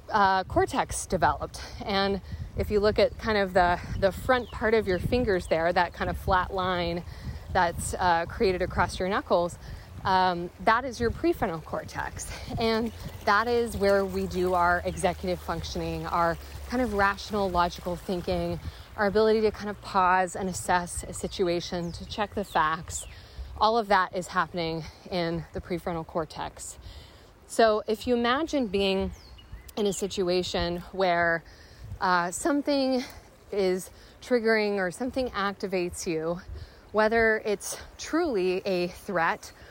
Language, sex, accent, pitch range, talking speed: English, female, American, 175-210 Hz, 145 wpm